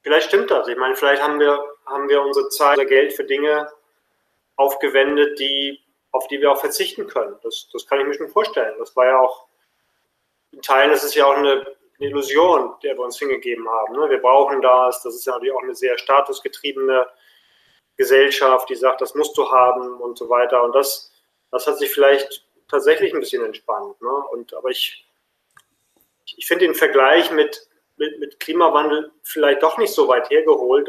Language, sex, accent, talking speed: German, male, German, 195 wpm